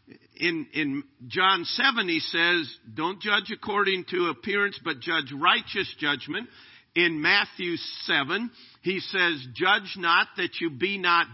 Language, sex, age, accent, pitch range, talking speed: English, male, 50-69, American, 125-195 Hz, 140 wpm